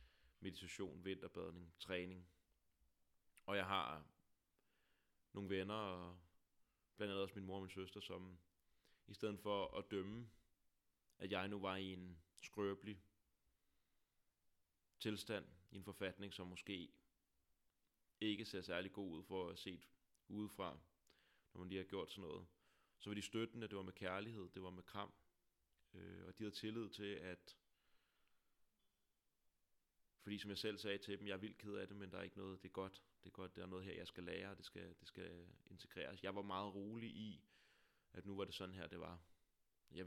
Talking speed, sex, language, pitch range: 185 wpm, male, Danish, 90-100 Hz